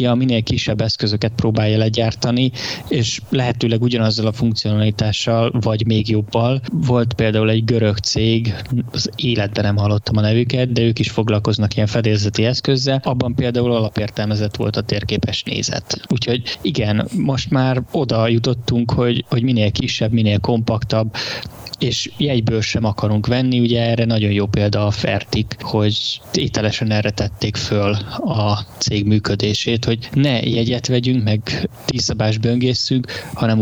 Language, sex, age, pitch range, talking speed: Hungarian, male, 20-39, 105-120 Hz, 140 wpm